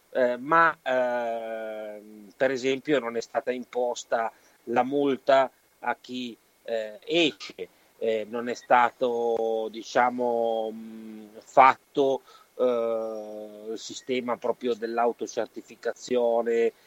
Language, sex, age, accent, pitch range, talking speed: Italian, male, 30-49, native, 115-145 Hz, 95 wpm